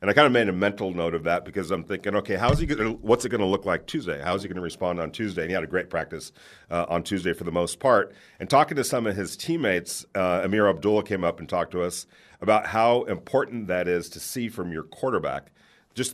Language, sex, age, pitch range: English, male, 40-59, 90-115 Hz